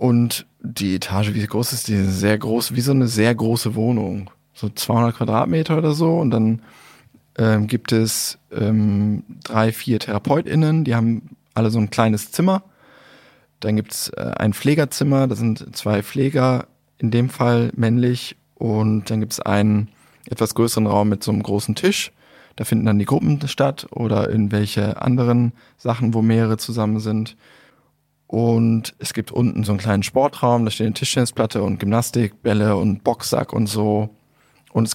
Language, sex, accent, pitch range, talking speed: German, male, German, 105-125 Hz, 170 wpm